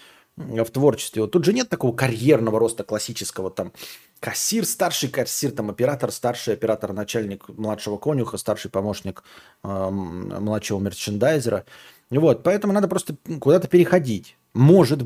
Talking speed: 130 wpm